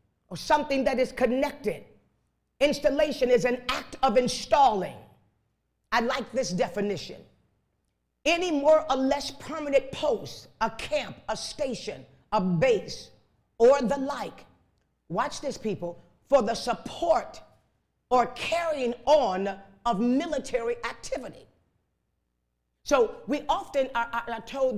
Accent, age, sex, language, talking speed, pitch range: American, 40-59, female, English, 120 wpm, 205-285 Hz